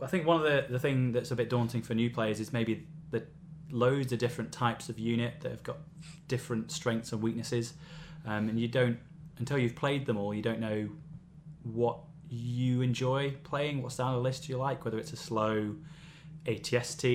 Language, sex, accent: English, male, British